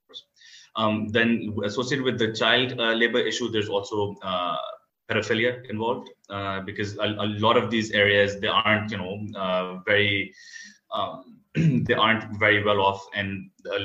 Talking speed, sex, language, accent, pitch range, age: 155 wpm, male, English, Indian, 100-120 Hz, 20-39